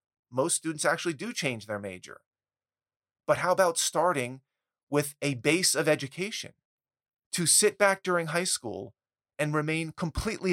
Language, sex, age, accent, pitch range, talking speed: English, male, 30-49, American, 135-175 Hz, 140 wpm